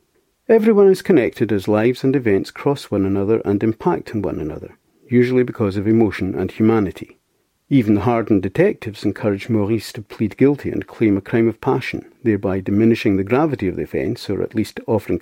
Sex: male